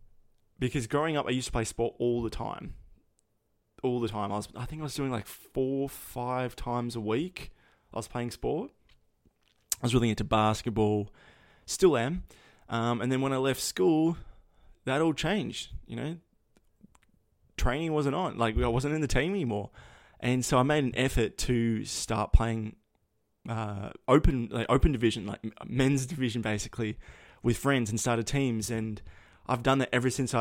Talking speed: 175 wpm